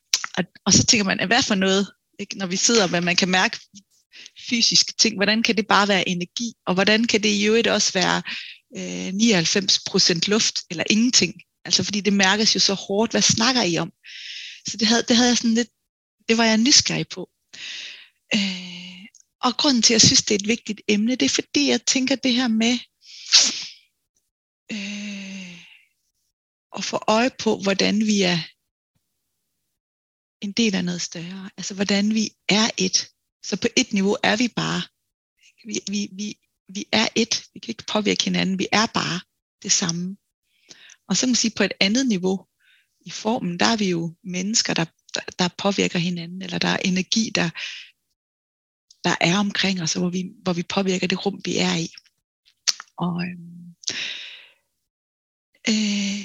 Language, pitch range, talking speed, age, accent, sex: Danish, 185-225 Hz, 175 wpm, 30-49, native, female